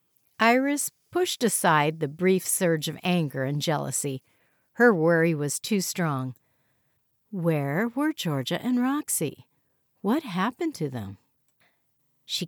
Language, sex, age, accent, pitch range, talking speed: English, female, 60-79, American, 145-245 Hz, 120 wpm